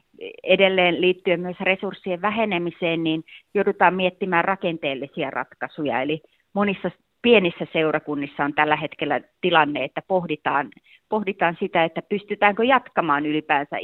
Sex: female